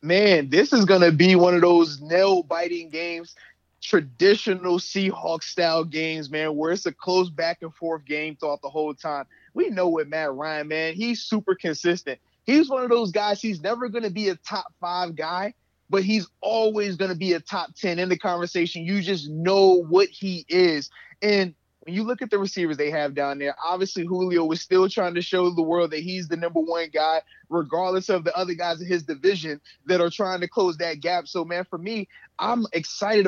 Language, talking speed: English, 200 wpm